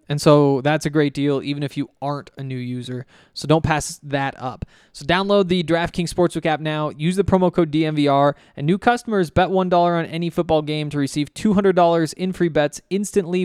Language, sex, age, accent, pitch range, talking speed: English, male, 20-39, American, 140-170 Hz, 205 wpm